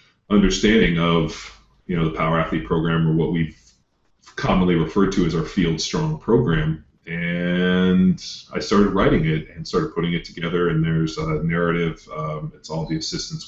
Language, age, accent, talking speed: English, 30-49, American, 170 wpm